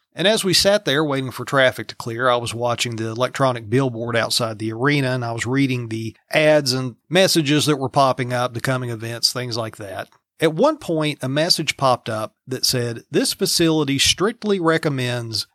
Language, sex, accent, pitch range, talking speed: English, male, American, 125-160 Hz, 195 wpm